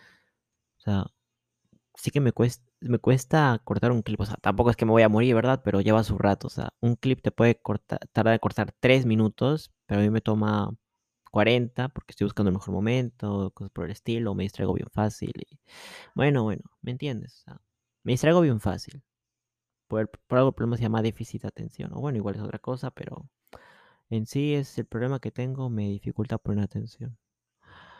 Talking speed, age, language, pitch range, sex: 205 wpm, 20-39, Spanish, 105-130 Hz, male